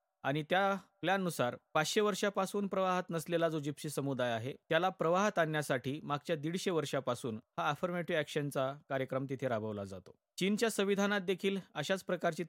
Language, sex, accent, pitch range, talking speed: Marathi, male, native, 145-185 Hz, 140 wpm